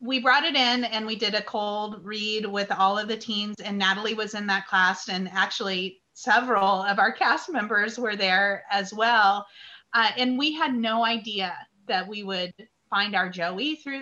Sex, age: female, 30-49